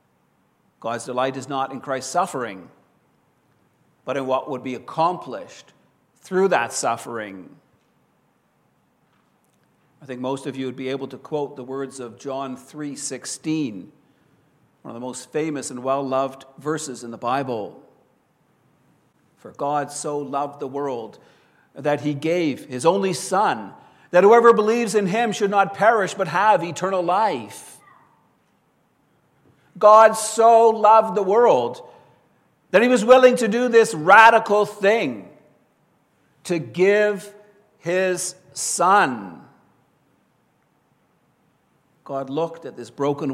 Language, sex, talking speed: English, male, 125 wpm